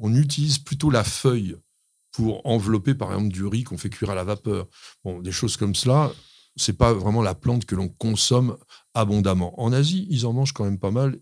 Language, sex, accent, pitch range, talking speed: French, male, French, 105-150 Hz, 220 wpm